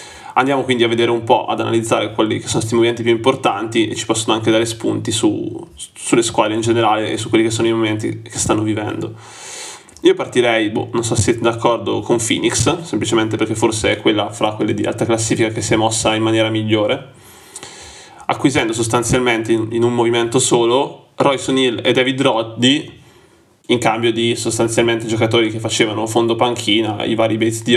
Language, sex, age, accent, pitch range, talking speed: Italian, male, 20-39, native, 110-120 Hz, 190 wpm